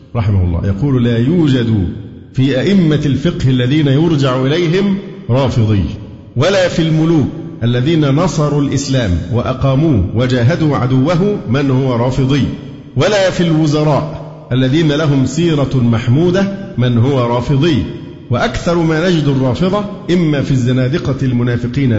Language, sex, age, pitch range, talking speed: Arabic, male, 50-69, 120-155 Hz, 110 wpm